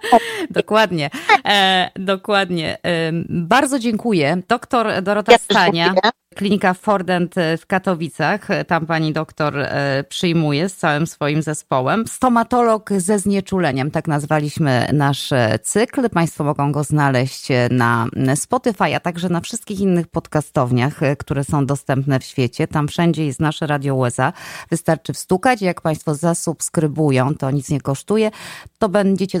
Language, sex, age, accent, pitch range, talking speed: Polish, female, 20-39, native, 135-180 Hz, 120 wpm